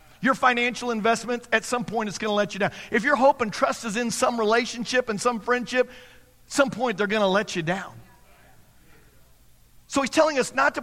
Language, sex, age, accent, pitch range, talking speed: English, male, 50-69, American, 200-255 Hz, 215 wpm